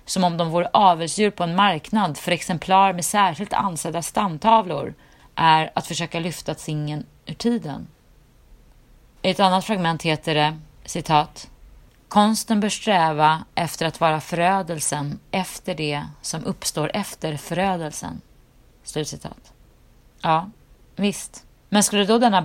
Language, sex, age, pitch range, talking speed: Swedish, female, 30-49, 165-205 Hz, 130 wpm